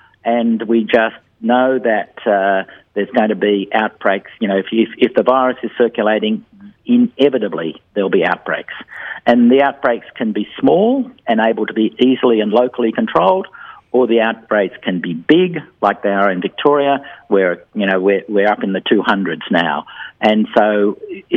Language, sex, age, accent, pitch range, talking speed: English, male, 50-69, Australian, 100-125 Hz, 170 wpm